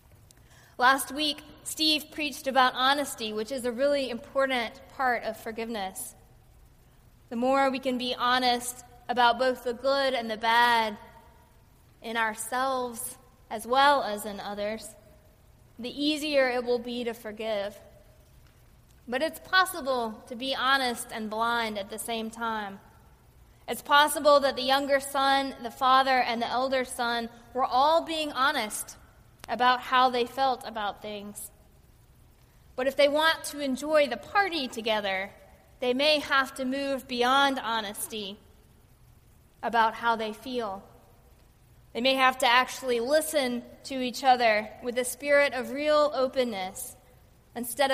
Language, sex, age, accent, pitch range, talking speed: English, female, 20-39, American, 225-270 Hz, 140 wpm